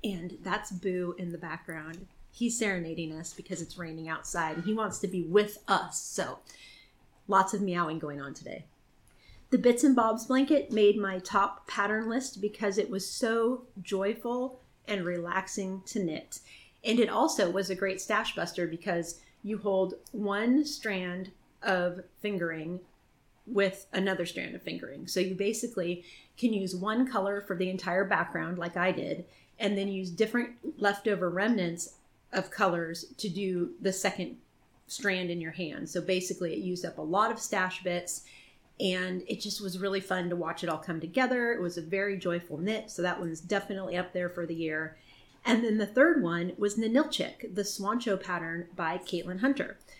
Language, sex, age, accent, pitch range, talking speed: English, female, 30-49, American, 175-215 Hz, 175 wpm